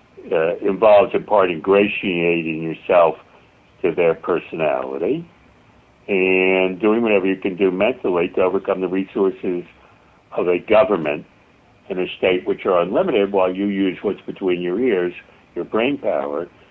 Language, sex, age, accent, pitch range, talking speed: English, male, 60-79, American, 90-105 Hz, 140 wpm